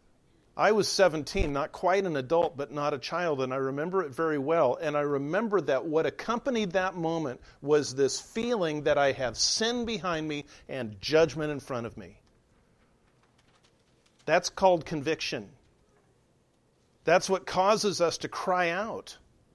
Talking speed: 155 wpm